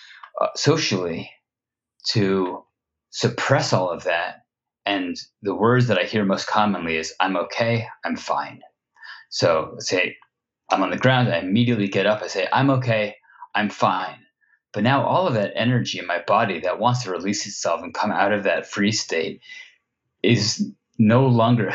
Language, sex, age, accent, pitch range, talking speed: English, male, 30-49, American, 100-125 Hz, 165 wpm